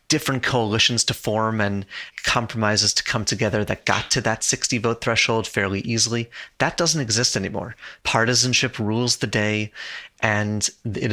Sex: male